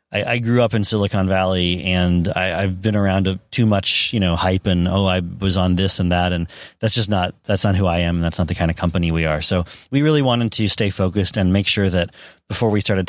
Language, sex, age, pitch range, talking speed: English, male, 30-49, 95-115 Hz, 260 wpm